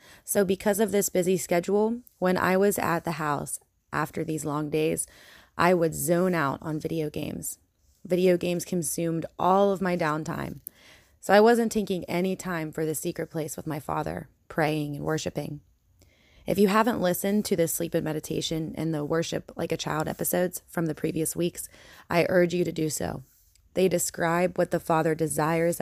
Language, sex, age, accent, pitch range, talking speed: English, female, 20-39, American, 150-180 Hz, 180 wpm